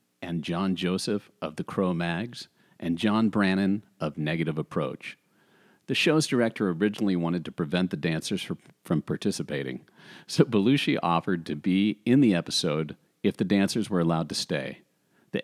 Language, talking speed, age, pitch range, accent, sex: English, 155 wpm, 40-59, 85-110 Hz, American, male